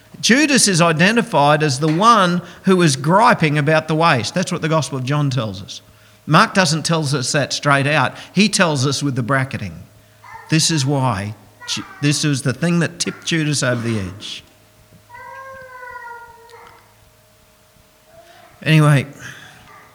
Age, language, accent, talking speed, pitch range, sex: 50-69, English, Australian, 140 wpm, 105-150 Hz, male